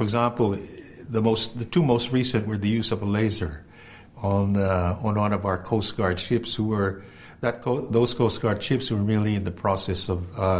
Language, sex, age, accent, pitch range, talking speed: Filipino, male, 60-79, American, 100-120 Hz, 215 wpm